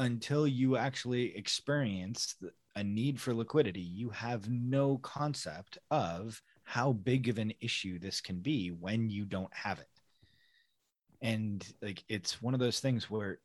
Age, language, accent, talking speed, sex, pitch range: 30-49, English, American, 150 wpm, male, 100-125 Hz